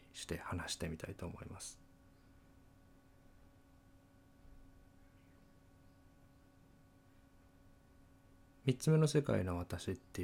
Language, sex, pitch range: Japanese, male, 90-105 Hz